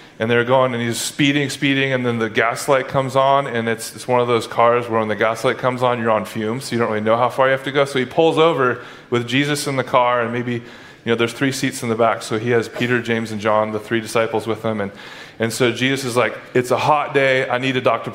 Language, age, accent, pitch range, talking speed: English, 20-39, American, 125-180 Hz, 280 wpm